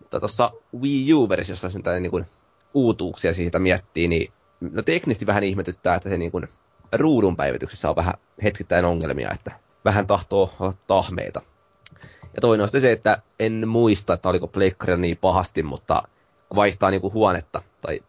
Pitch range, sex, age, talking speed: 90-105 Hz, male, 20-39, 155 wpm